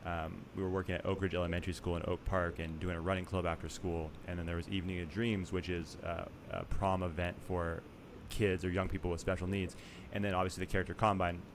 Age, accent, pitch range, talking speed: 30-49, American, 85-100 Hz, 240 wpm